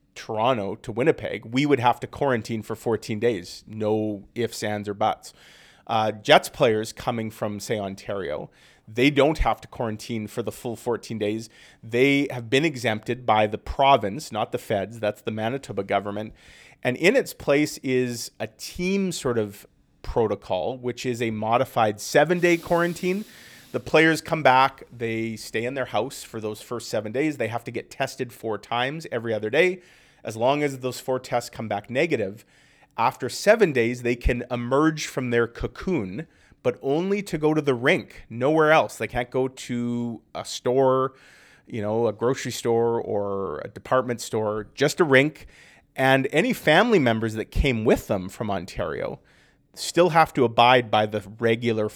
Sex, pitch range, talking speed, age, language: male, 110-135 Hz, 170 wpm, 30-49, English